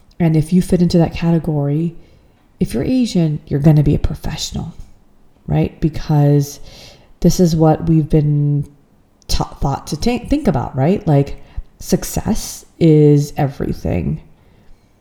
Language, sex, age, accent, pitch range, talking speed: English, female, 40-59, American, 145-175 Hz, 135 wpm